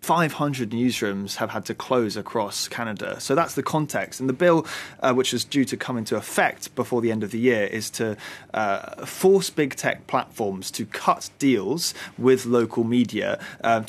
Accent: British